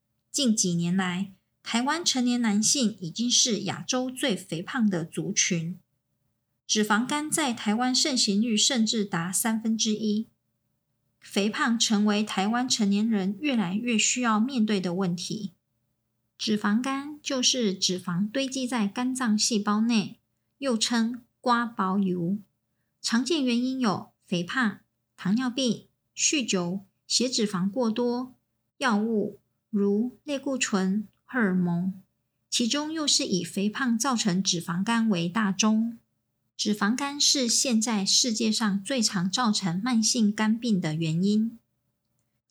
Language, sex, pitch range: Chinese, male, 190-245 Hz